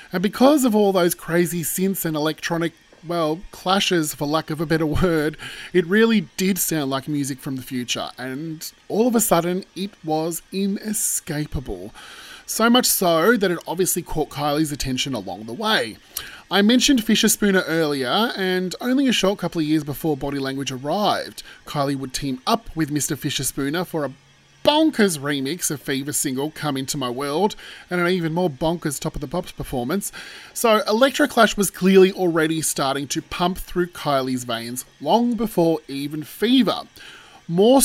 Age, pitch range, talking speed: 30-49, 145-200 Hz, 170 wpm